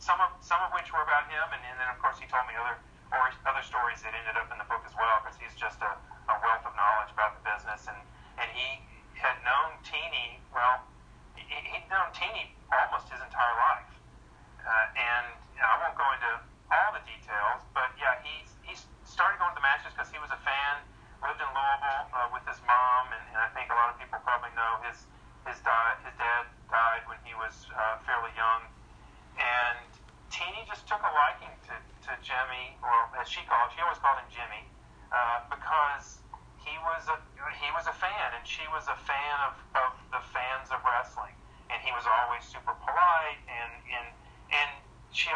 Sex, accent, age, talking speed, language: male, American, 40-59, 205 wpm, English